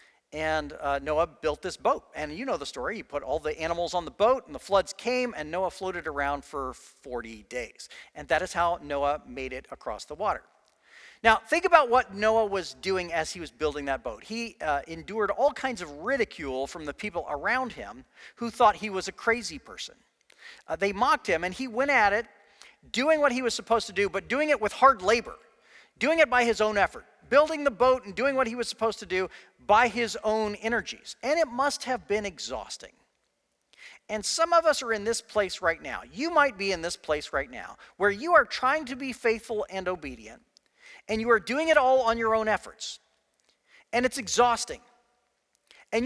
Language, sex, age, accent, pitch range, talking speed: English, male, 40-59, American, 185-260 Hz, 210 wpm